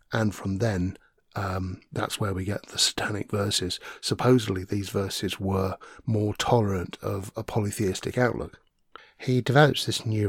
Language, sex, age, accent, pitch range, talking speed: English, male, 50-69, British, 95-110 Hz, 145 wpm